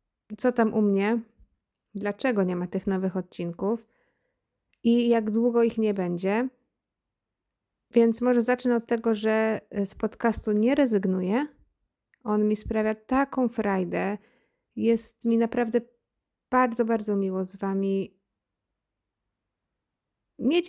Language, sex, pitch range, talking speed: Polish, female, 205-250 Hz, 115 wpm